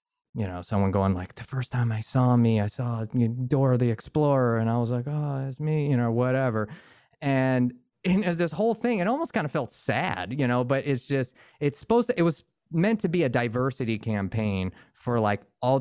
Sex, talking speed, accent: male, 215 wpm, American